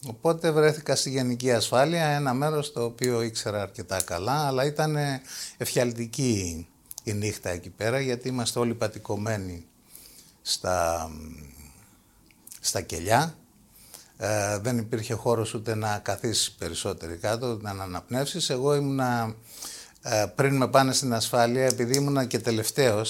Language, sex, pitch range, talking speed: Greek, male, 105-135 Hz, 125 wpm